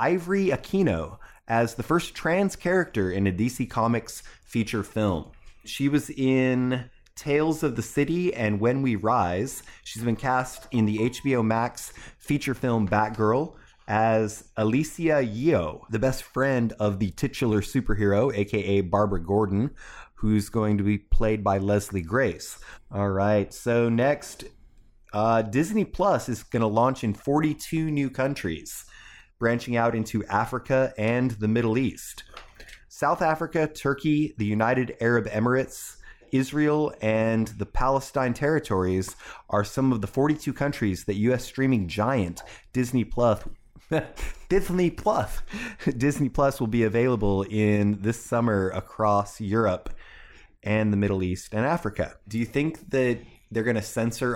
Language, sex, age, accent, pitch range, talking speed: English, male, 30-49, American, 105-135 Hz, 140 wpm